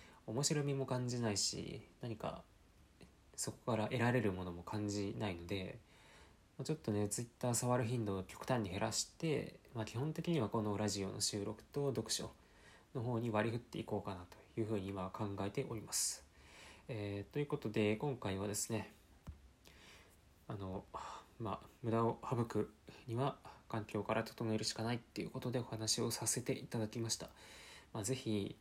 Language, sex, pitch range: Japanese, male, 105-125 Hz